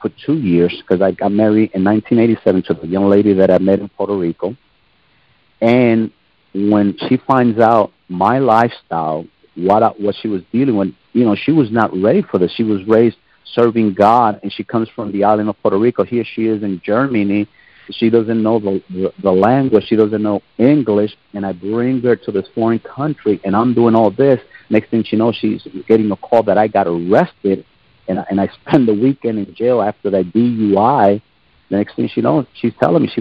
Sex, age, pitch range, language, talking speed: male, 50-69, 95-115 Hz, English, 205 wpm